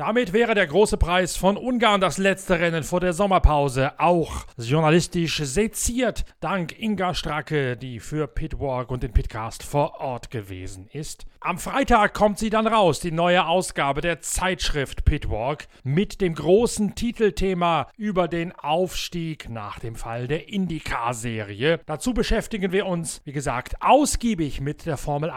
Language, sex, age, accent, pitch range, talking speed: German, male, 40-59, German, 130-185 Hz, 150 wpm